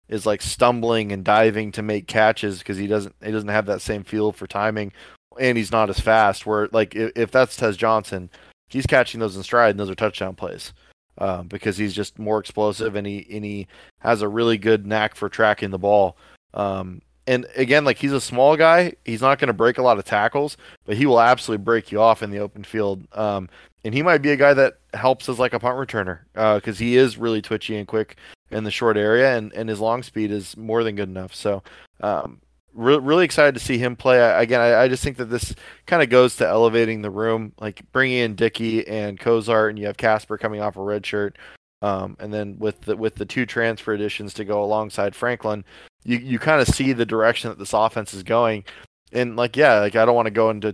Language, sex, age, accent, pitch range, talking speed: English, male, 20-39, American, 105-120 Hz, 235 wpm